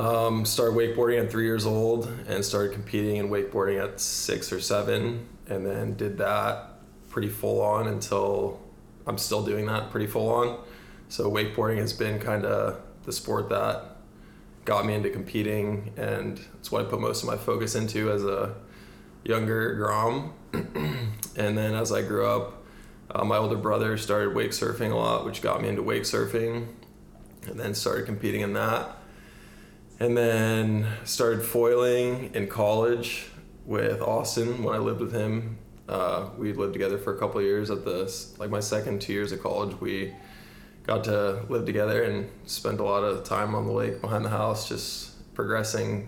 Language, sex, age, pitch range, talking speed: English, male, 20-39, 105-115 Hz, 175 wpm